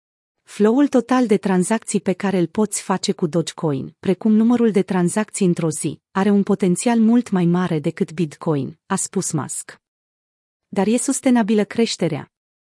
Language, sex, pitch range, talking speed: Romanian, female, 175-220 Hz, 150 wpm